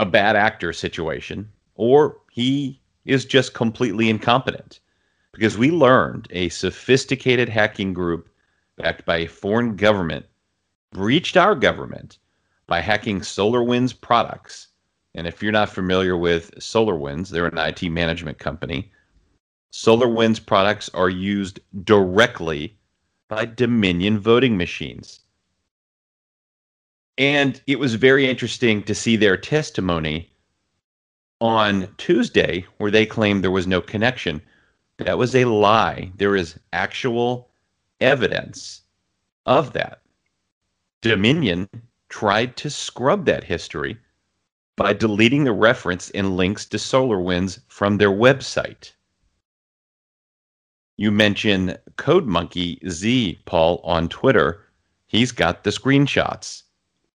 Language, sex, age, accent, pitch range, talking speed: English, male, 40-59, American, 90-120 Hz, 110 wpm